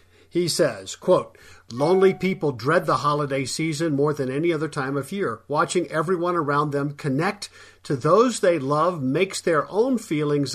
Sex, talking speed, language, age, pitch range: male, 165 wpm, English, 50-69, 130-175 Hz